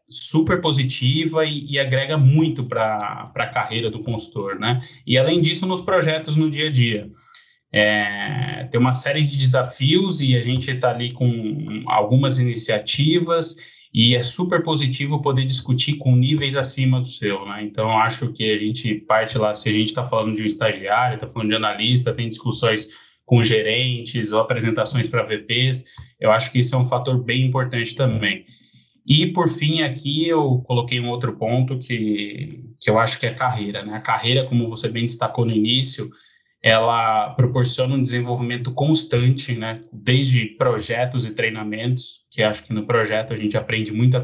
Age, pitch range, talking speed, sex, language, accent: 20-39, 110-130 Hz, 175 wpm, male, Portuguese, Brazilian